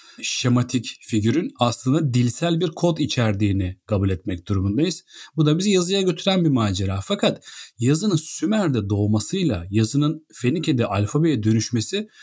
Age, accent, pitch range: 40-59, native, 115-150 Hz